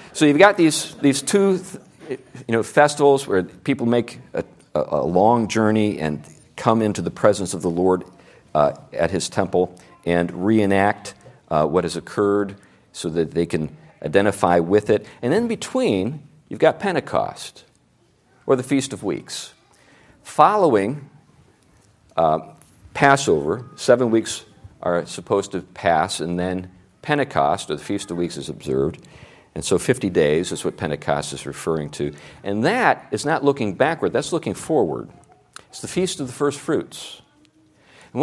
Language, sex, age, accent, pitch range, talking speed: English, male, 50-69, American, 90-135 Hz, 155 wpm